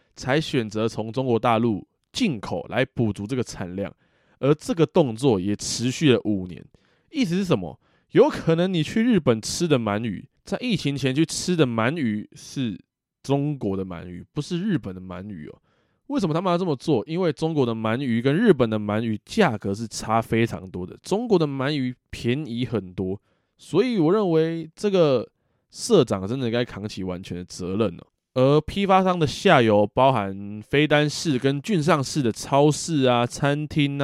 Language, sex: Chinese, male